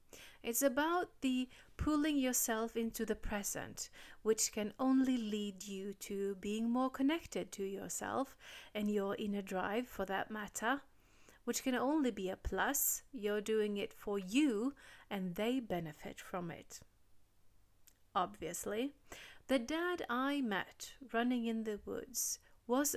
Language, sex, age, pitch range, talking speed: English, female, 30-49, 200-260 Hz, 135 wpm